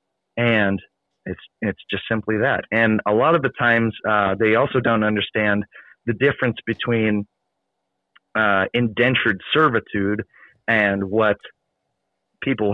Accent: American